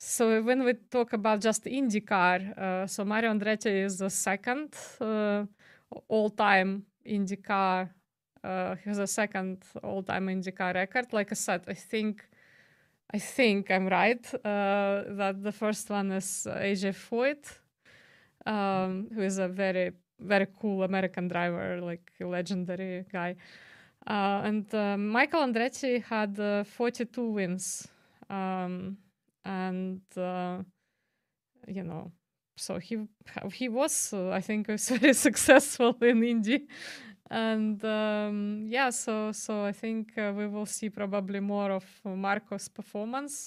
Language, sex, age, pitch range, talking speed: English, female, 20-39, 190-220 Hz, 135 wpm